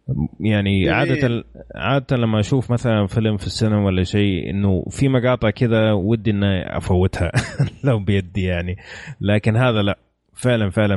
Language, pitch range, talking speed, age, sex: Arabic, 90-110 Hz, 140 wpm, 30-49, male